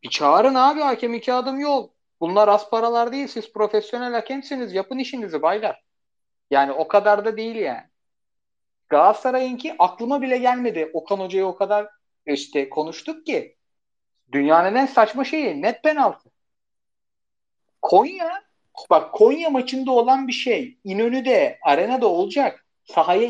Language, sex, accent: Turkish, male, native